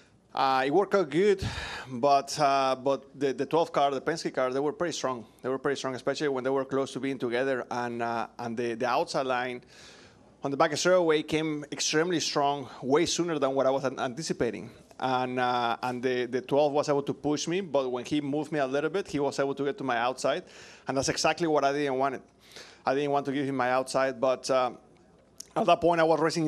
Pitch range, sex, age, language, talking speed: 130-155 Hz, male, 30-49, English, 235 wpm